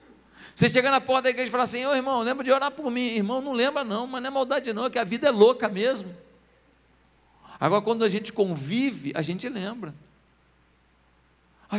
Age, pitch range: 50-69, 150-220 Hz